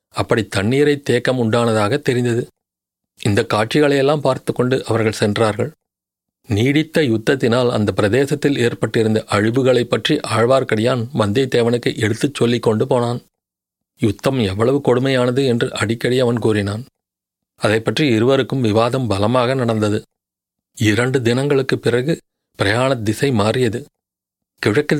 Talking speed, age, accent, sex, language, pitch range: 105 wpm, 40-59, native, male, Tamil, 115-135 Hz